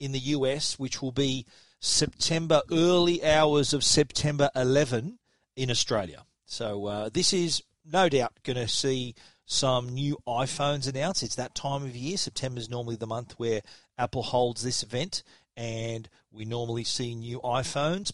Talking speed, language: 160 wpm, English